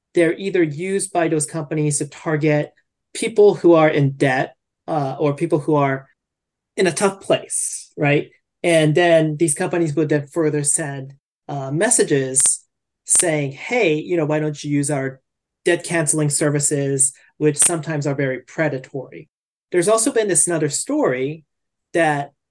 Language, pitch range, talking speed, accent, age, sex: English, 140-170 Hz, 150 wpm, American, 30-49, male